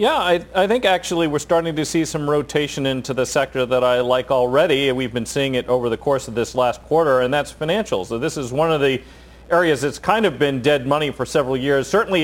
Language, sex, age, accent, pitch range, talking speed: English, male, 40-59, American, 125-150 Hz, 240 wpm